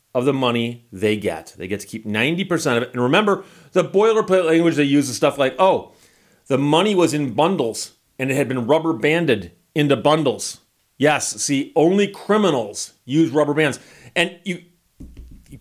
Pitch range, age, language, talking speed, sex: 120-155 Hz, 40-59, English, 175 wpm, male